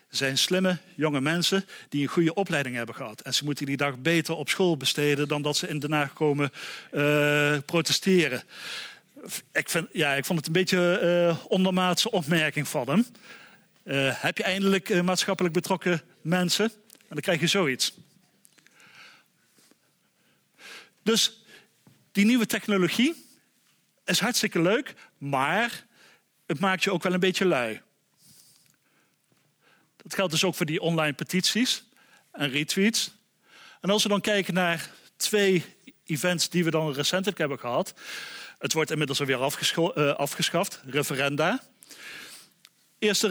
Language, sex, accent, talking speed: Dutch, male, Dutch, 135 wpm